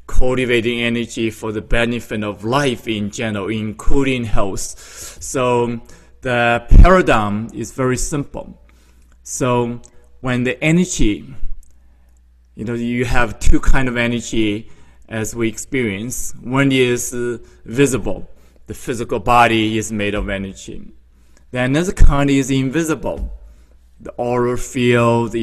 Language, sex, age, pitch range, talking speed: English, male, 20-39, 105-125 Hz, 120 wpm